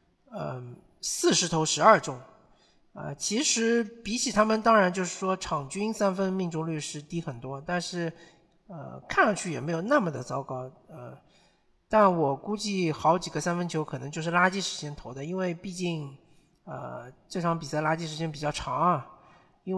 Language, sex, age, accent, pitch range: Chinese, male, 50-69, native, 150-195 Hz